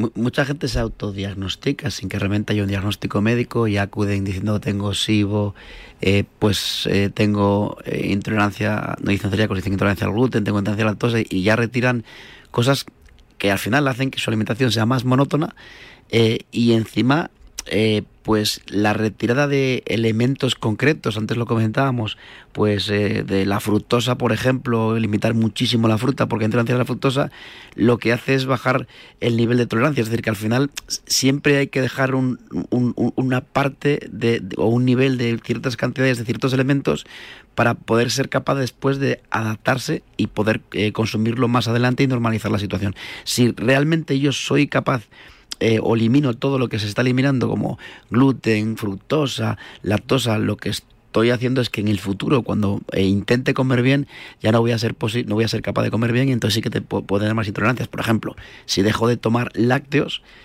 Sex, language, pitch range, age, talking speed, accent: male, Spanish, 105-130 Hz, 30-49, 190 wpm, Spanish